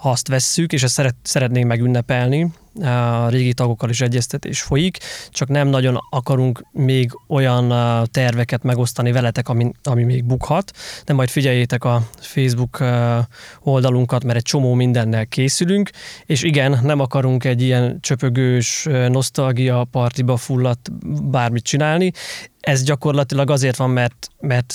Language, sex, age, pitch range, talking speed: Hungarian, male, 20-39, 125-145 Hz, 135 wpm